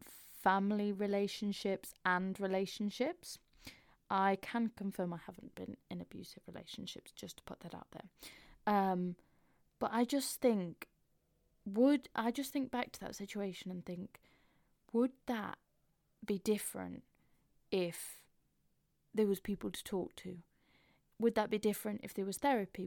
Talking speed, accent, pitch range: 140 wpm, British, 185-215 Hz